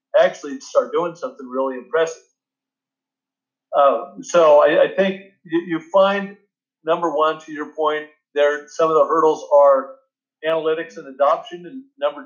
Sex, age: male, 50-69